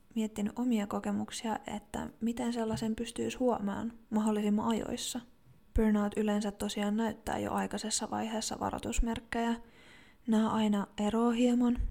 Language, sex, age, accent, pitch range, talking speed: Finnish, female, 20-39, native, 195-220 Hz, 110 wpm